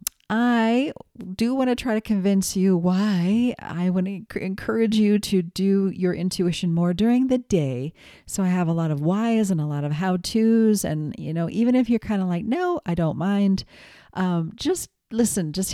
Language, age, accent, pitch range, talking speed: English, 40-59, American, 160-200 Hz, 200 wpm